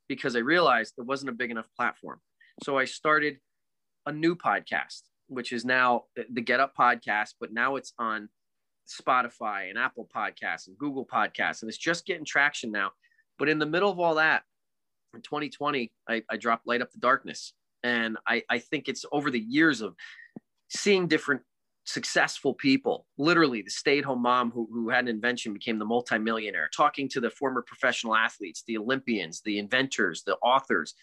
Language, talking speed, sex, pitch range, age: English, 180 wpm, male, 115-155 Hz, 30-49